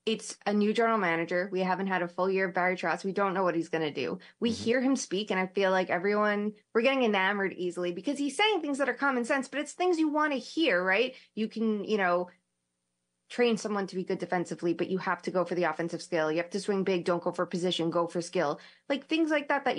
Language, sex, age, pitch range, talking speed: English, female, 20-39, 180-235 Hz, 265 wpm